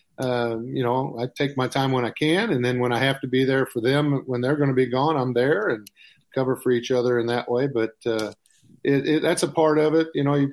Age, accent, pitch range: 40-59, American, 125-145 Hz